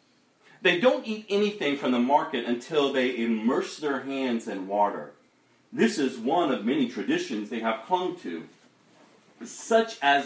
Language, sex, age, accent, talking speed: English, male, 40-59, American, 150 wpm